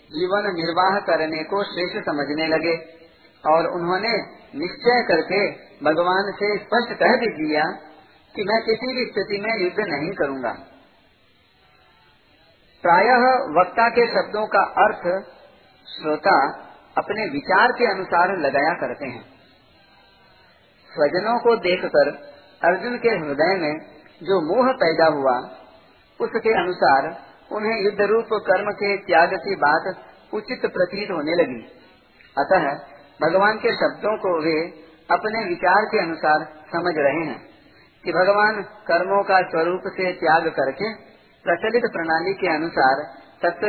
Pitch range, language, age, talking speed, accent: 165-215 Hz, Hindi, 40-59, 125 wpm, native